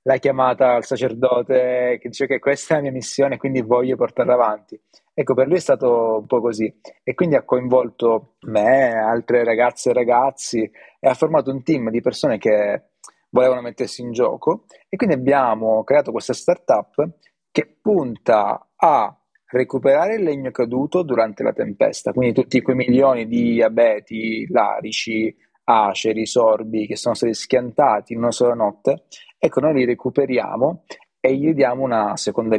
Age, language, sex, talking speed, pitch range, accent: 30-49, Italian, male, 160 wpm, 115-135 Hz, native